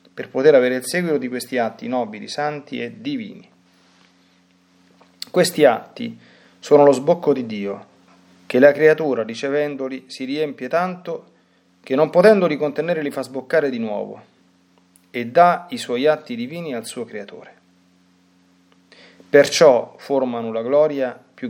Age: 30-49